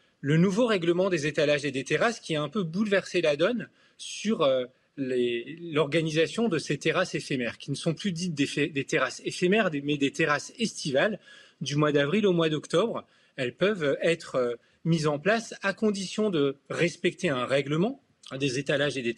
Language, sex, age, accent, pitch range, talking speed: French, male, 30-49, French, 140-190 Hz, 180 wpm